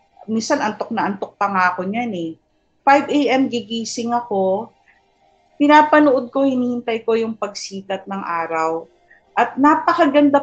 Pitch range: 200-270 Hz